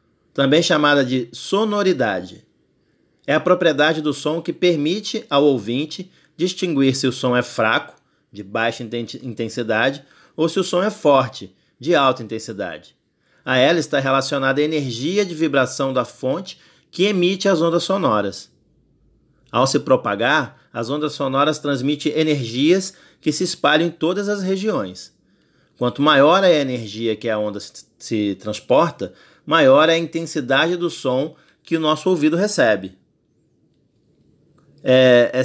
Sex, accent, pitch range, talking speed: male, Brazilian, 120-165 Hz, 140 wpm